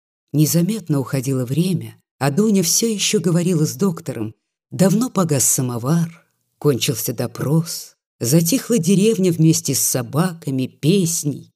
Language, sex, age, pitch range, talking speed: Russian, female, 30-49, 135-185 Hz, 110 wpm